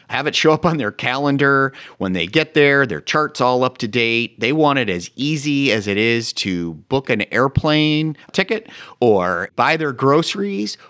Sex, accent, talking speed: male, American, 185 wpm